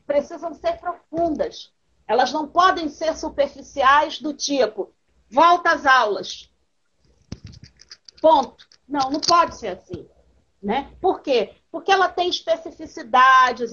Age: 40-59